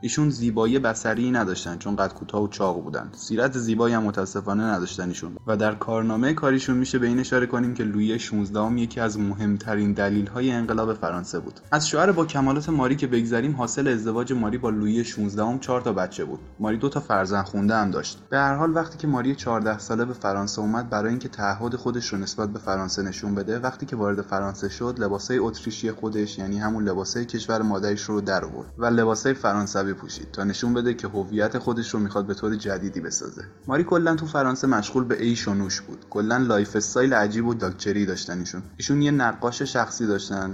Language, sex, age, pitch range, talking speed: Persian, male, 10-29, 100-125 Hz, 190 wpm